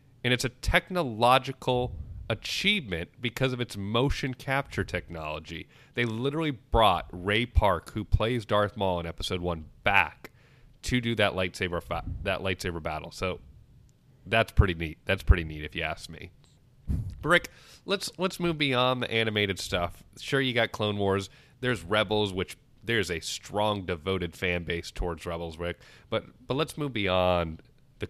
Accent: American